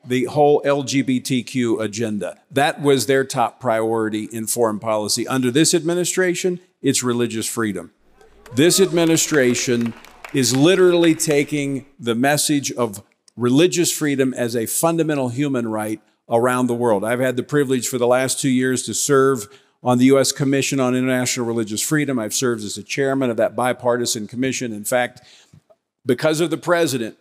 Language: English